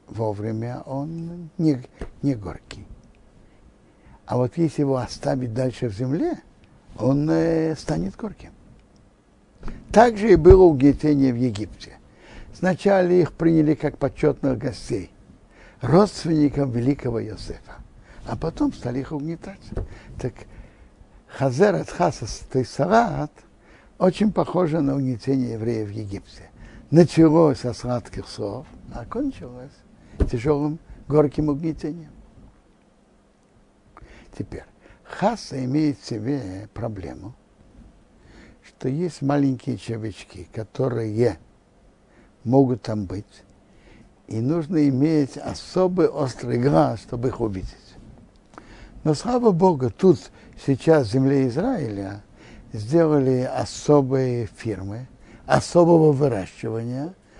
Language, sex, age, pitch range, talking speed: Russian, male, 60-79, 115-160 Hz, 100 wpm